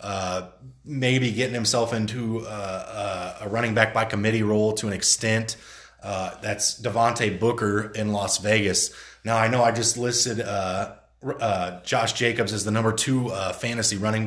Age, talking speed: 30-49, 170 wpm